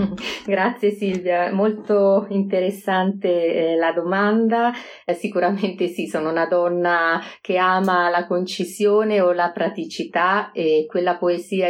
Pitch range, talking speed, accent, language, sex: 165-195 Hz, 120 wpm, native, Italian, female